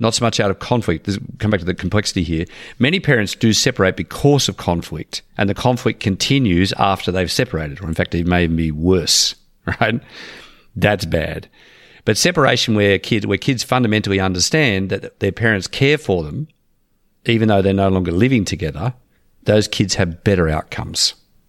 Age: 50-69